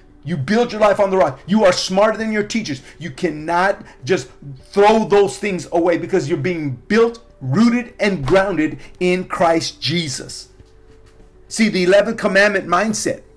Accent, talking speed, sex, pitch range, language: American, 155 wpm, male, 155-195 Hz, English